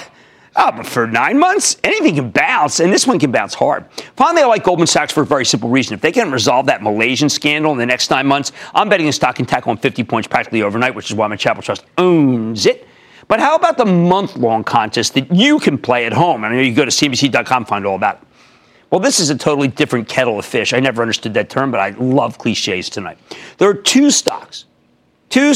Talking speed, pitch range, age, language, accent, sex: 240 wpm, 125-190 Hz, 40-59, English, American, male